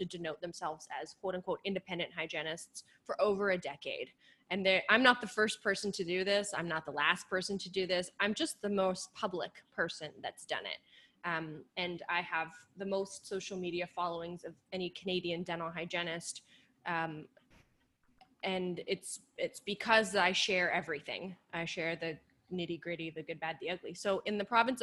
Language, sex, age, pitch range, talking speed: English, female, 20-39, 170-200 Hz, 180 wpm